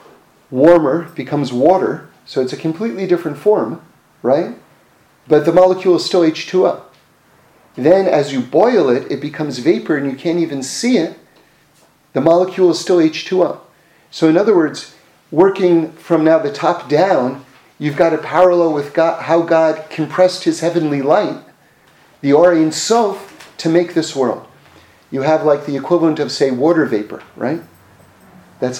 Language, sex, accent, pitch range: English, male, American, 135-170 Hz